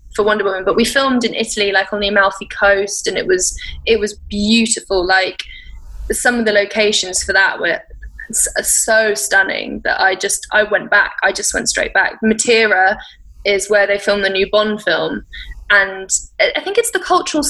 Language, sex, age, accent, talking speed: English, female, 10-29, British, 190 wpm